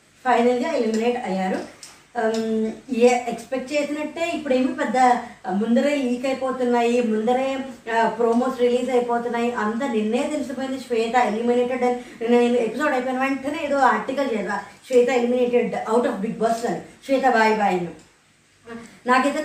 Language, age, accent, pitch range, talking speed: Telugu, 20-39, native, 235-285 Hz, 120 wpm